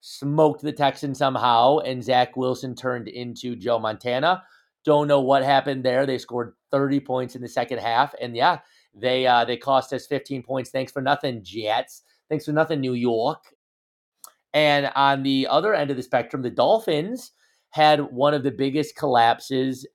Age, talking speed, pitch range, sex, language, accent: 30-49, 175 wpm, 130-150 Hz, male, English, American